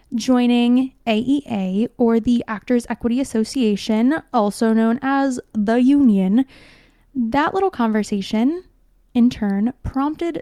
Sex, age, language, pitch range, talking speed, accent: female, 20-39, English, 230-285 Hz, 105 wpm, American